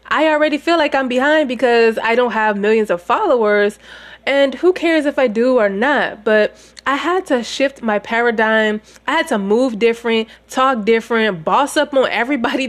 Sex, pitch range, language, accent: female, 215-275 Hz, English, American